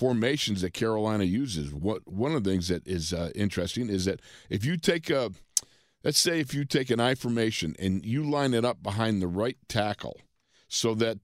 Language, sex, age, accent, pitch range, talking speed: English, male, 50-69, American, 100-125 Hz, 205 wpm